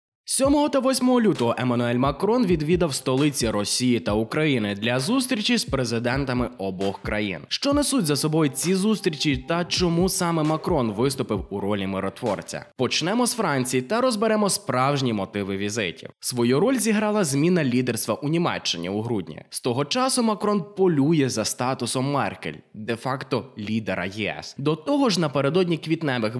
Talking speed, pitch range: 145 wpm, 115-185 Hz